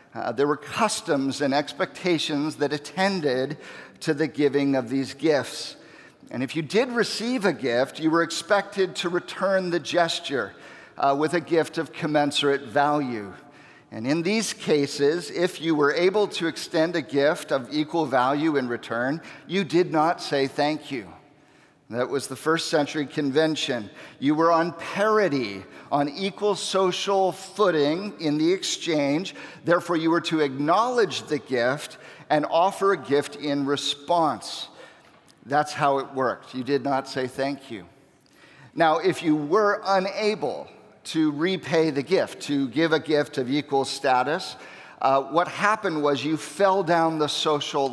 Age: 50-69